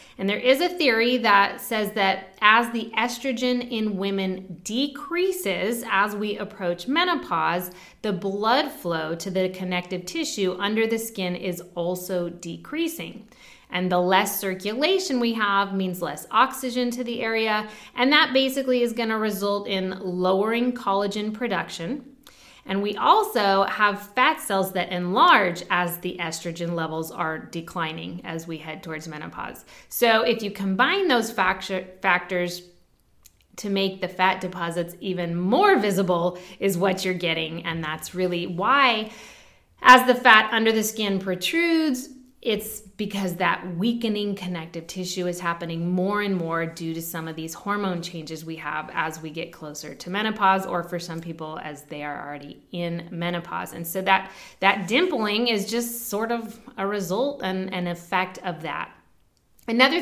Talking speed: 155 wpm